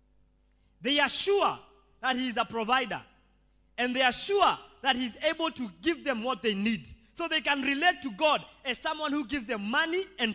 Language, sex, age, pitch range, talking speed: English, male, 20-39, 205-305 Hz, 195 wpm